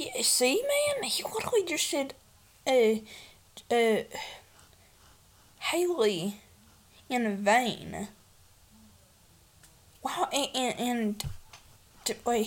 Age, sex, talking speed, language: 20-39, female, 85 wpm, English